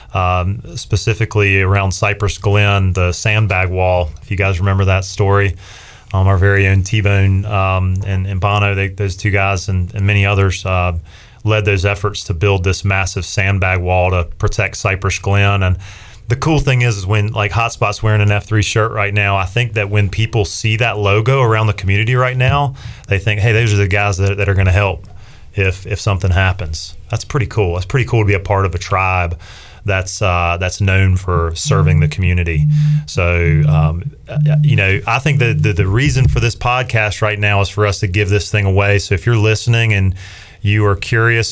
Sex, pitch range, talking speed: male, 95-110 Hz, 200 wpm